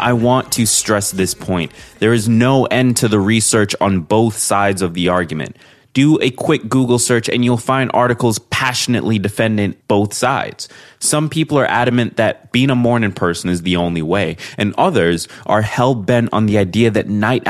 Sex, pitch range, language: male, 100-135 Hz, English